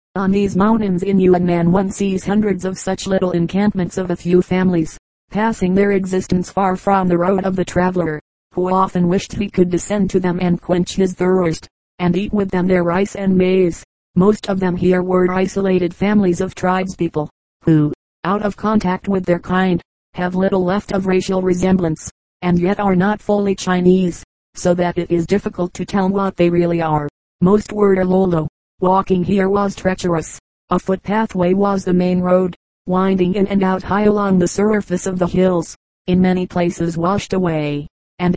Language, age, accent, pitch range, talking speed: English, 40-59, American, 180-195 Hz, 180 wpm